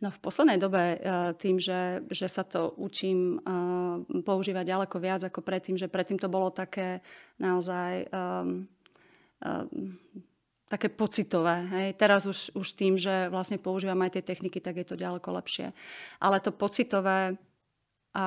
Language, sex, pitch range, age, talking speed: Slovak, female, 180-195 Hz, 30-49, 125 wpm